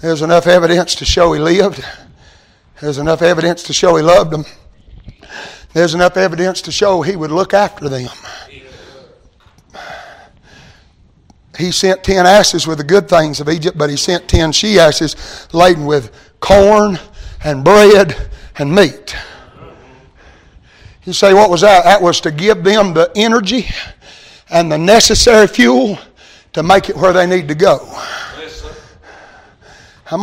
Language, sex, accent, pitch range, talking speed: English, male, American, 165-230 Hz, 145 wpm